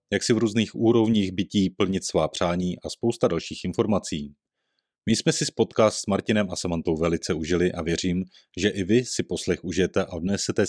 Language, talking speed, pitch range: Czech, 185 wpm, 90-115 Hz